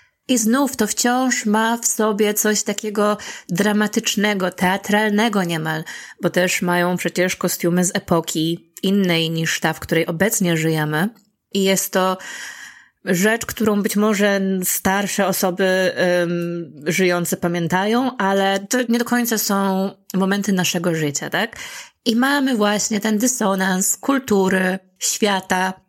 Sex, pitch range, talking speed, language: female, 175-220 Hz, 125 wpm, Polish